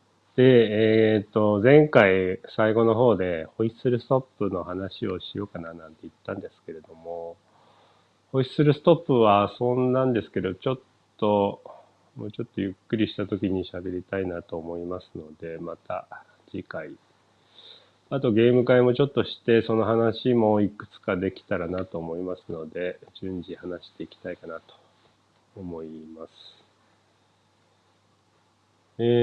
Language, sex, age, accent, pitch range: Japanese, male, 40-59, native, 90-115 Hz